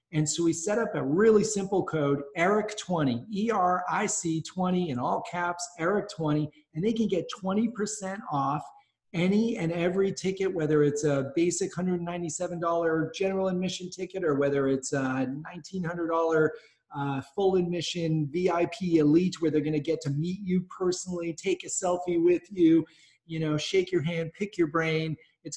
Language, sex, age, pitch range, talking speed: English, male, 40-59, 145-175 Hz, 155 wpm